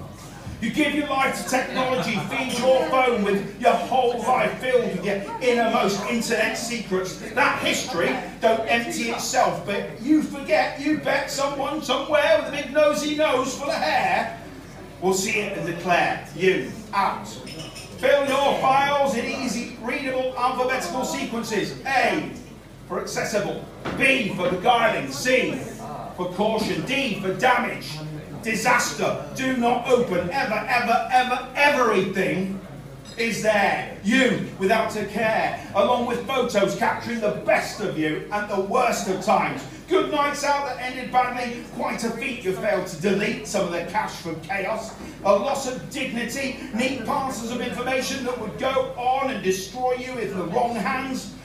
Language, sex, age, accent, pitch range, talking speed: English, male, 40-59, British, 205-260 Hz, 155 wpm